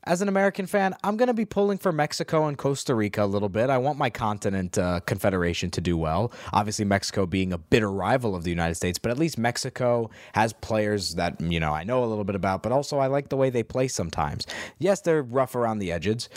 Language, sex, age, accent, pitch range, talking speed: English, male, 20-39, American, 110-155 Hz, 240 wpm